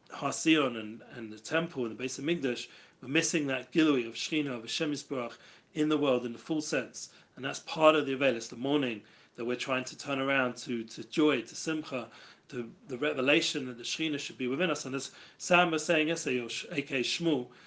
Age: 40-59